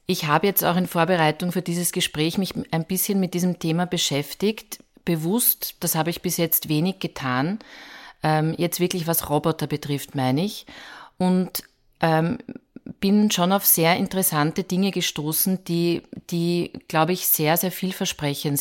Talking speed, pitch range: 155 wpm, 160-185 Hz